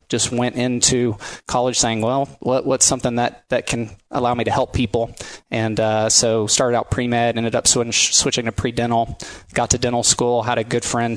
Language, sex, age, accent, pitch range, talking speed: English, male, 20-39, American, 110-125 Hz, 190 wpm